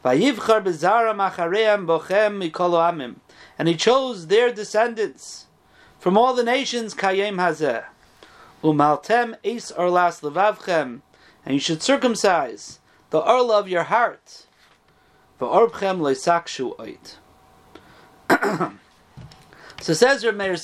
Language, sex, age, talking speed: English, male, 40-59, 60 wpm